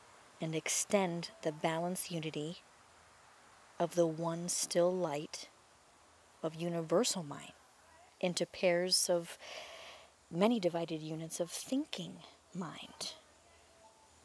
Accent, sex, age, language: American, female, 30-49, English